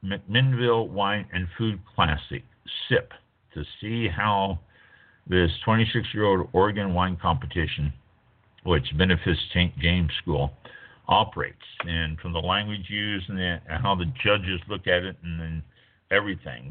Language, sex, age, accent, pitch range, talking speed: English, male, 60-79, American, 85-105 Hz, 135 wpm